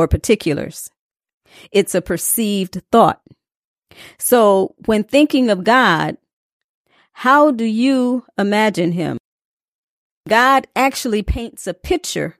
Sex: female